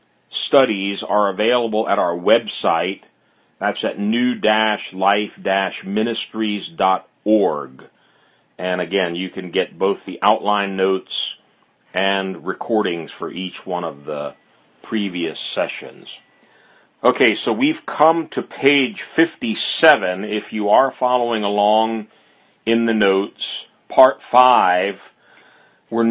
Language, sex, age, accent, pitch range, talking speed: English, male, 40-59, American, 100-130 Hz, 105 wpm